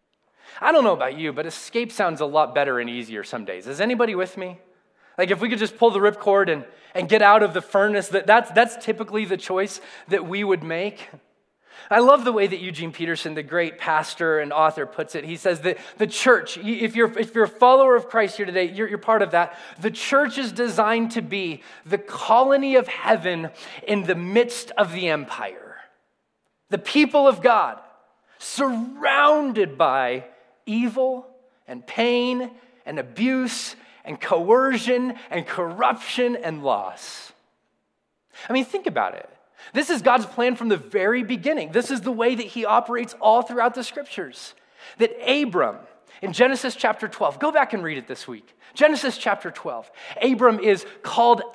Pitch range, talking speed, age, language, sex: 185-250 Hz, 180 wpm, 20-39, English, male